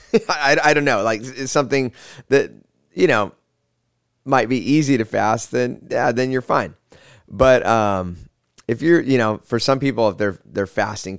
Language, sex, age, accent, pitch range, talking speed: English, male, 30-49, American, 100-125 Hz, 175 wpm